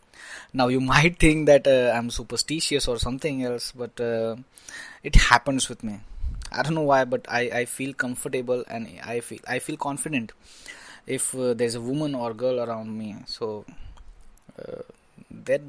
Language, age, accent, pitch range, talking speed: English, 20-39, Indian, 120-145 Hz, 170 wpm